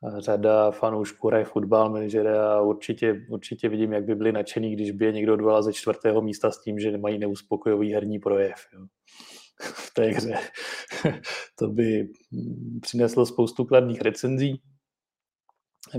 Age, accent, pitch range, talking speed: 30-49, native, 105-115 Hz, 145 wpm